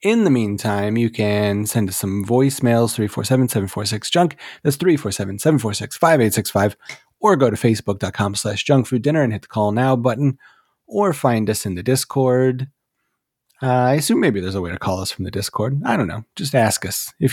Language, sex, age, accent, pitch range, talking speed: English, male, 30-49, American, 105-135 Hz, 195 wpm